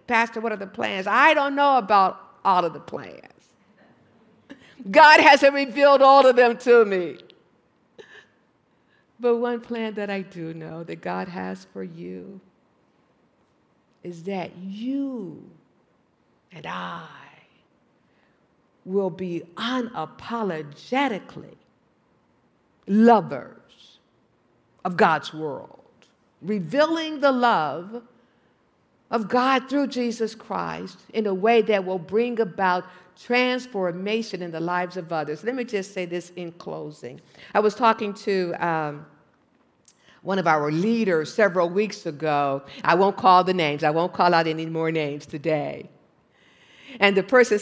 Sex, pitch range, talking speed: female, 165-230 Hz, 125 wpm